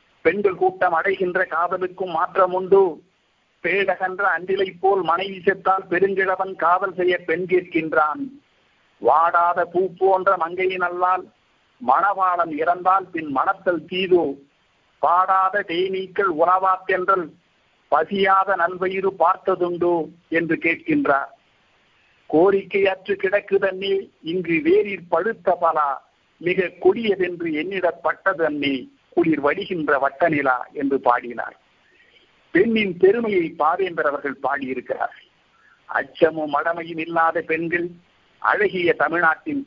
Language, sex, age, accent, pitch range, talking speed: Tamil, male, 50-69, native, 165-195 Hz, 85 wpm